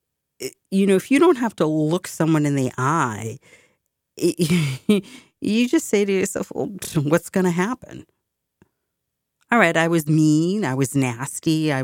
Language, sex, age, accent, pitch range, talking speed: English, female, 40-59, American, 140-175 Hz, 150 wpm